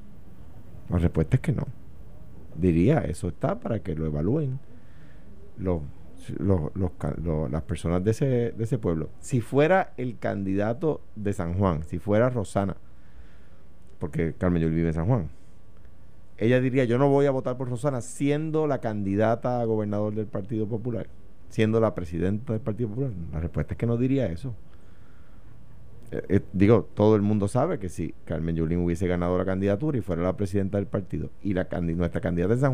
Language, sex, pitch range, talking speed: Spanish, male, 85-120 Hz, 180 wpm